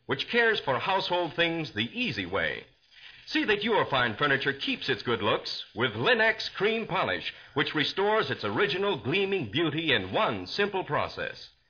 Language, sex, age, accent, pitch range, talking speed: English, male, 60-79, American, 140-215 Hz, 160 wpm